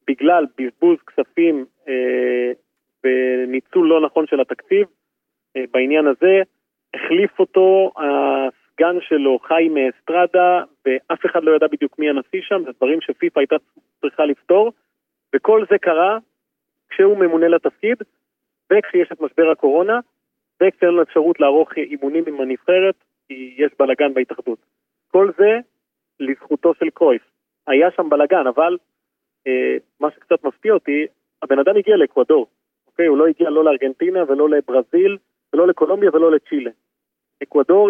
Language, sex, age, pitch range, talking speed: Hebrew, male, 30-49, 140-190 Hz, 135 wpm